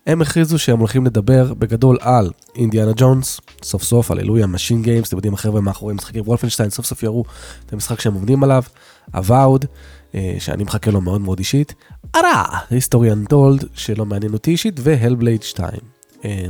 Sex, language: male, Hebrew